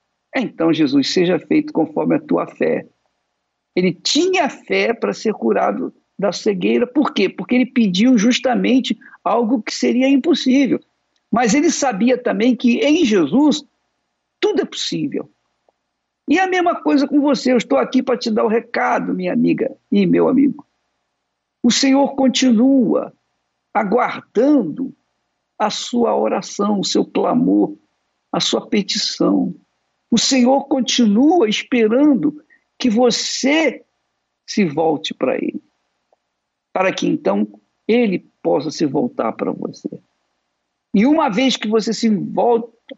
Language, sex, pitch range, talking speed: Portuguese, male, 190-280 Hz, 130 wpm